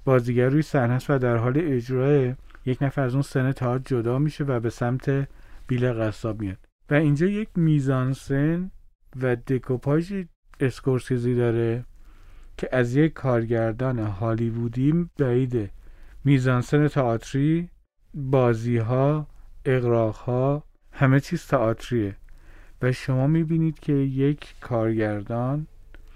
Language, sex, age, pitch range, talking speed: Persian, male, 40-59, 115-140 Hz, 110 wpm